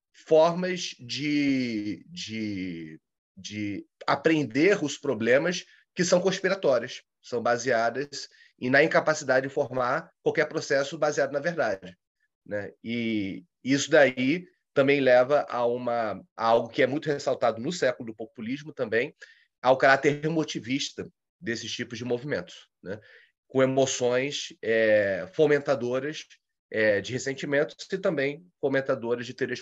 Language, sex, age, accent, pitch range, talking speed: Portuguese, male, 30-49, Brazilian, 115-150 Hz, 125 wpm